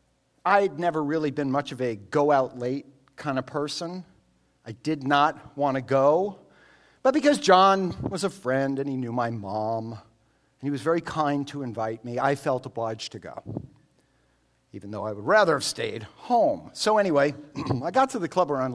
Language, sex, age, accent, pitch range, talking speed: English, male, 50-69, American, 125-160 Hz, 180 wpm